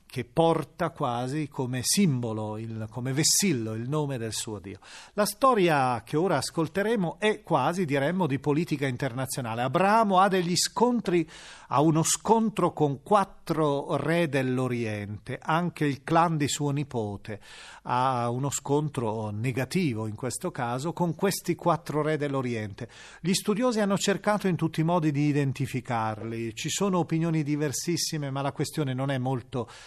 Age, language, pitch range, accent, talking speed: 40-59, Italian, 125-185 Hz, native, 145 wpm